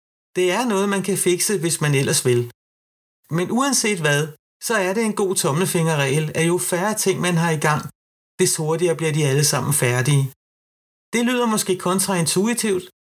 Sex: male